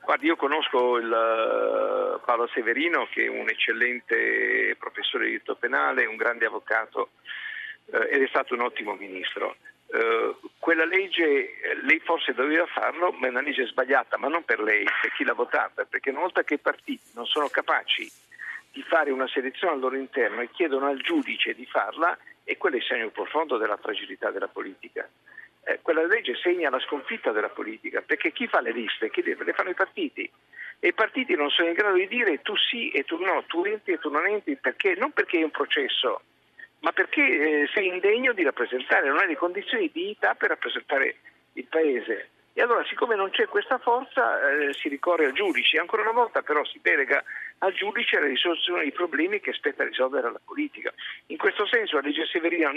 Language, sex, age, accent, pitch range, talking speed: Italian, male, 50-69, native, 265-440 Hz, 190 wpm